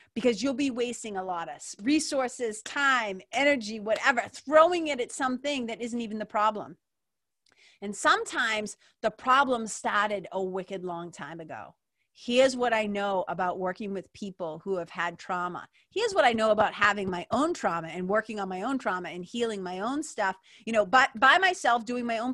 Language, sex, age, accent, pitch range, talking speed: English, female, 30-49, American, 210-300 Hz, 190 wpm